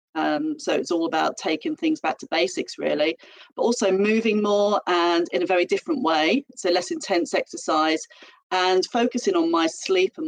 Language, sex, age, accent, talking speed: English, female, 40-59, British, 180 wpm